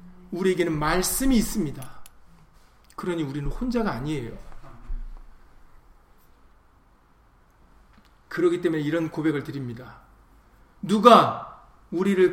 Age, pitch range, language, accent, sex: 40-59, 170-245 Hz, Korean, native, male